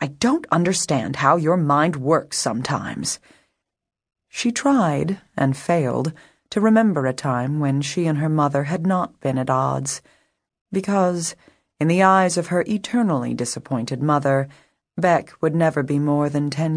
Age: 30-49